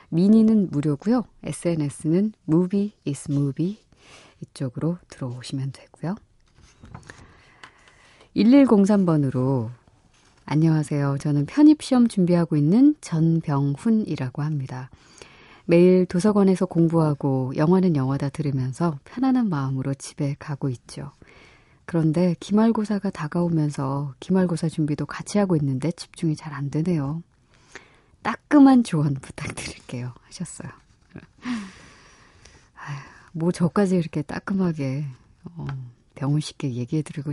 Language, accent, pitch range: Korean, native, 140-180 Hz